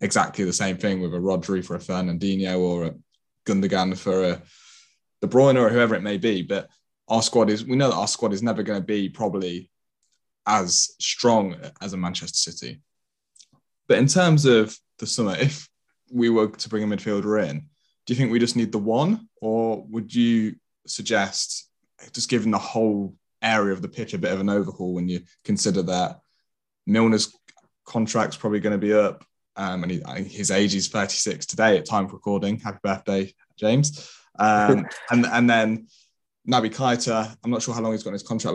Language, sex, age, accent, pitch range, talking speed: English, male, 20-39, British, 95-115 Hz, 190 wpm